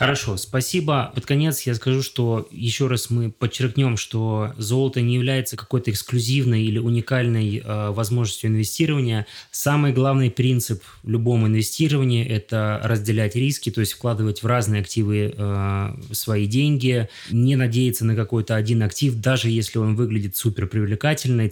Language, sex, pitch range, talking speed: Russian, male, 110-130 Hz, 140 wpm